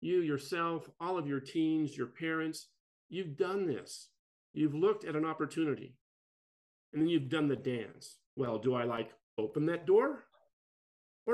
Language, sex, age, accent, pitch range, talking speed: English, male, 50-69, American, 135-180 Hz, 155 wpm